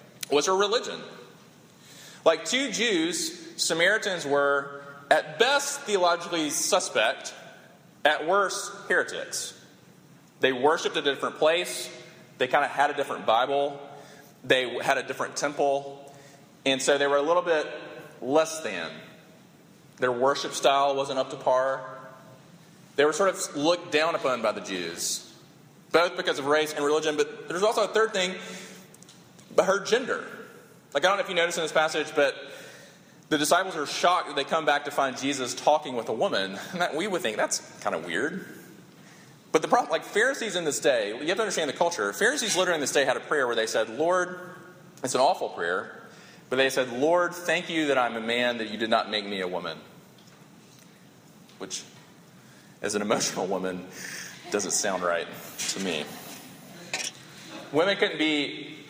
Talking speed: 170 wpm